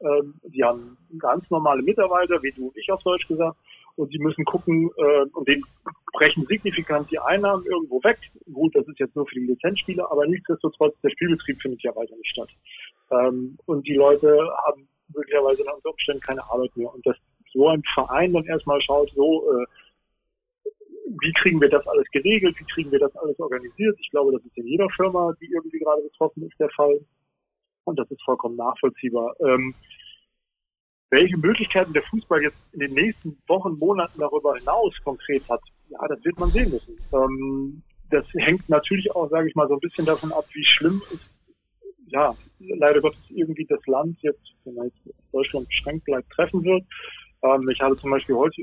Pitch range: 135-175 Hz